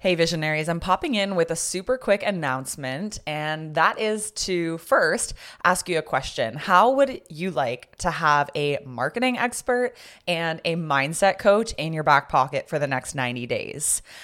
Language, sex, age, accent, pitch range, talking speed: English, female, 20-39, American, 150-195 Hz, 175 wpm